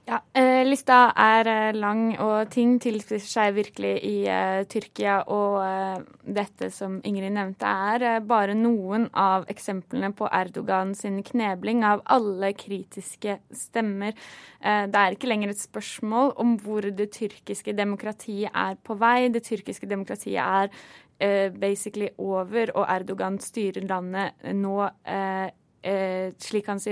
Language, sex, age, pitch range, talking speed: English, female, 20-39, 195-225 Hz, 150 wpm